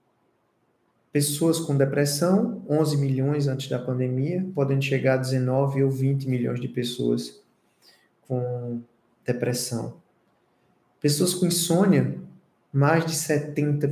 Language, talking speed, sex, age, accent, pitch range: Portuguese, 110 wpm, male, 20-39, Brazilian, 125-150 Hz